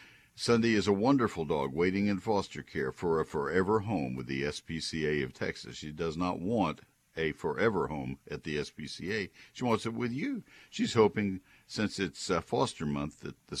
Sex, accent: male, American